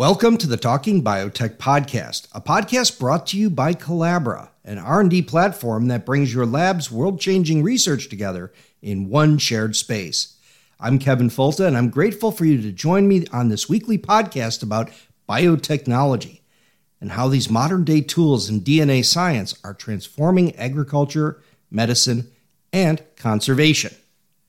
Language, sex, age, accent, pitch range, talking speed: English, male, 50-69, American, 115-160 Hz, 140 wpm